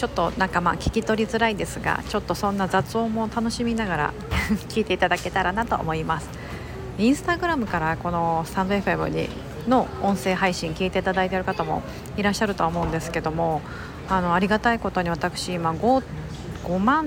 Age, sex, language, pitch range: 40-59, female, Japanese, 175-240 Hz